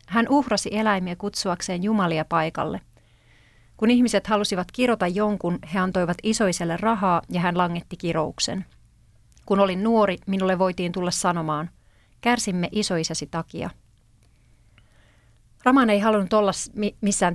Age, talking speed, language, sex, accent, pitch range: 30-49, 120 wpm, Finnish, female, native, 165-200 Hz